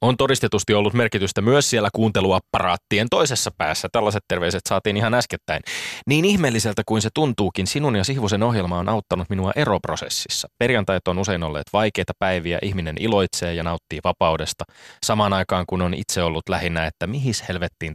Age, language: 20-39, Finnish